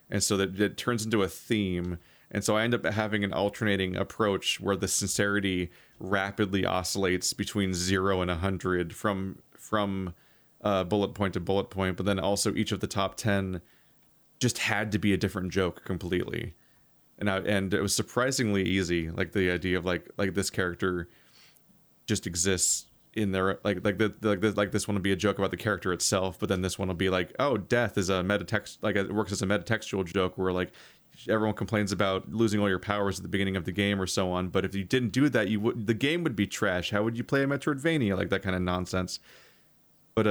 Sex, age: male, 30-49